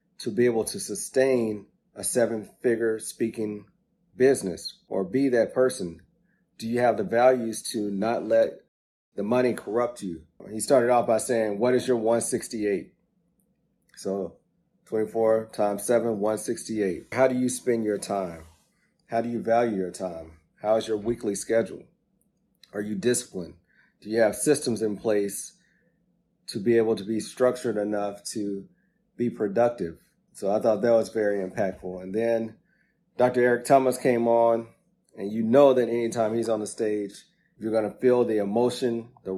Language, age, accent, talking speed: English, 30-49, American, 160 wpm